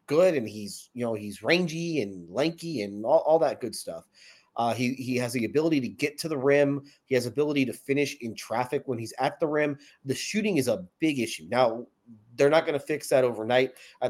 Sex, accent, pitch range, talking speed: male, American, 125-145 Hz, 225 wpm